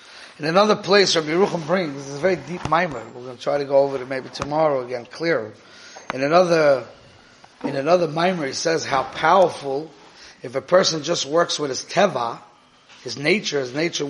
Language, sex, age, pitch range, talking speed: English, male, 30-49, 145-185 Hz, 185 wpm